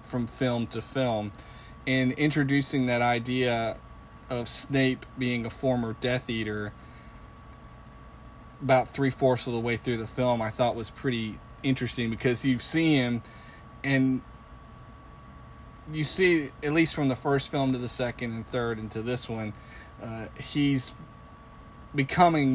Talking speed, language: 140 wpm, English